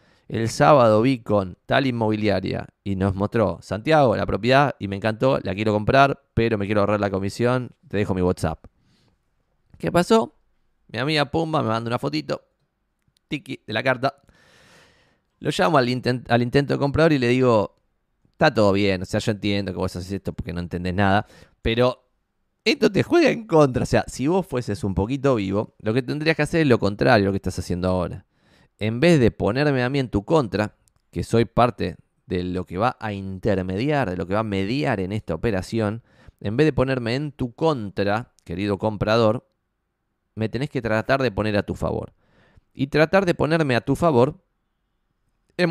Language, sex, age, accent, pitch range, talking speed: Spanish, male, 20-39, Argentinian, 95-130 Hz, 190 wpm